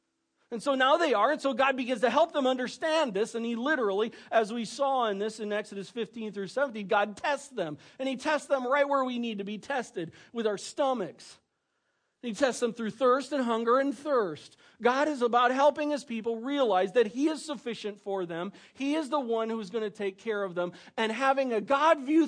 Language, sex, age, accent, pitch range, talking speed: English, male, 40-59, American, 195-265 Hz, 220 wpm